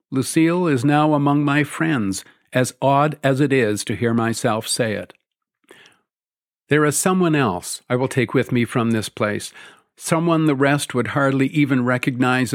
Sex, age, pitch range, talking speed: male, 50-69, 120-150 Hz, 165 wpm